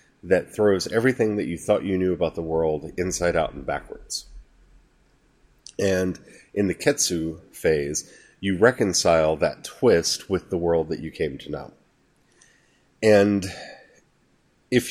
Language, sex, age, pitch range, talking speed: English, male, 30-49, 85-100 Hz, 135 wpm